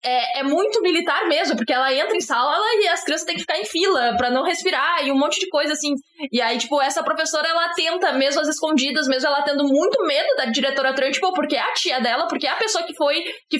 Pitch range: 265-340 Hz